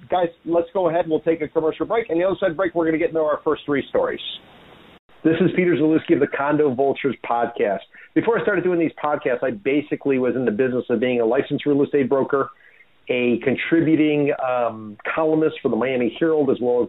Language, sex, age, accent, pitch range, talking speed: English, male, 50-69, American, 130-160 Hz, 225 wpm